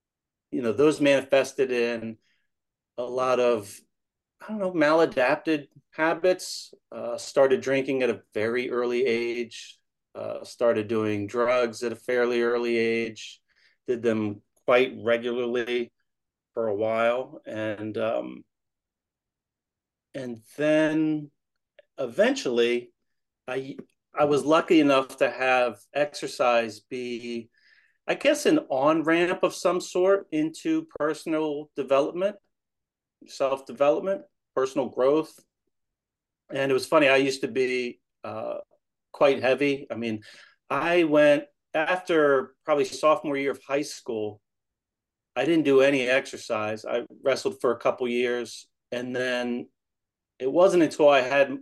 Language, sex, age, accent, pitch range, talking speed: English, male, 30-49, American, 120-155 Hz, 120 wpm